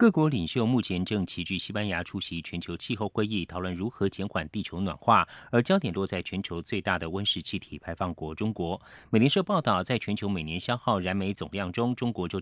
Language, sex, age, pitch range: Chinese, male, 30-49, 90-120 Hz